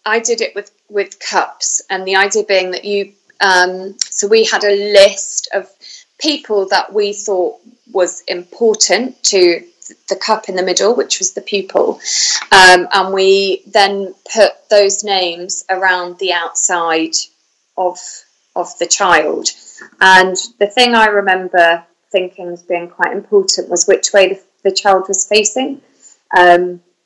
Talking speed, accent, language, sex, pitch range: 150 wpm, British, English, female, 180-215 Hz